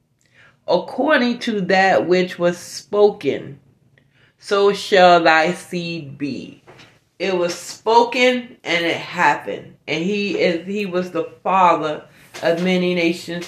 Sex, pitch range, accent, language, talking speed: female, 165-205 Hz, American, English, 115 wpm